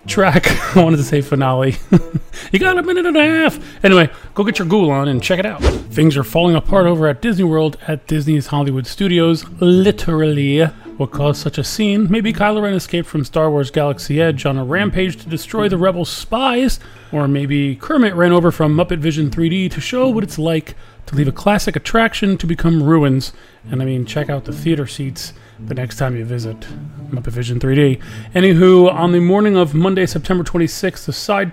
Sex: male